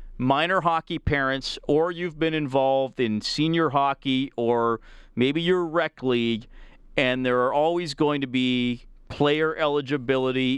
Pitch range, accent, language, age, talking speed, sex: 125-165 Hz, American, English, 40-59, 135 wpm, male